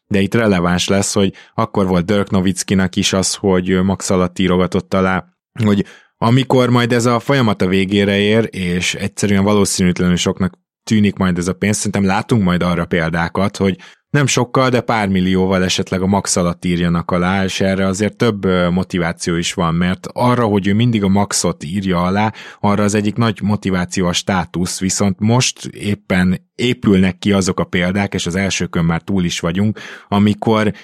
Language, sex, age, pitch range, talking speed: Hungarian, male, 20-39, 90-105 Hz, 175 wpm